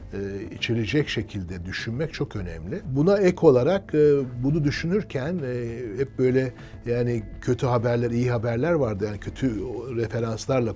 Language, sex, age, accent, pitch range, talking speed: Turkish, male, 60-79, native, 110-135 Hz, 135 wpm